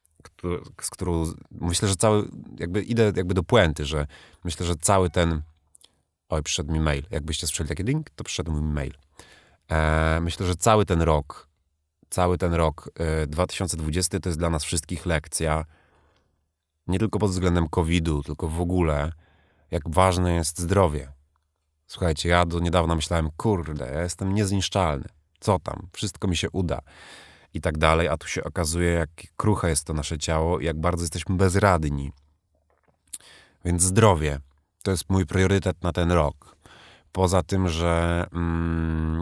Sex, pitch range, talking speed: male, 80-95 Hz, 160 wpm